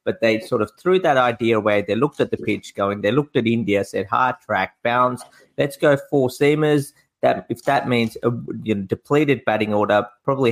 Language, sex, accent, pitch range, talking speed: English, male, Australian, 105-140 Hz, 210 wpm